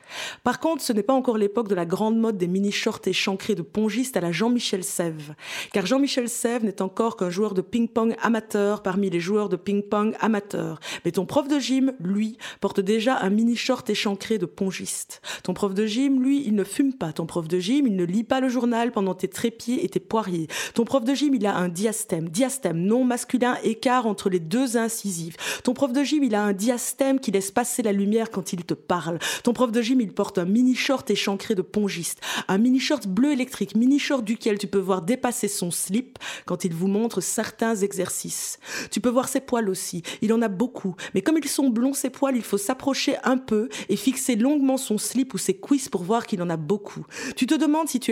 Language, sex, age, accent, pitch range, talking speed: French, female, 20-39, French, 195-255 Hz, 220 wpm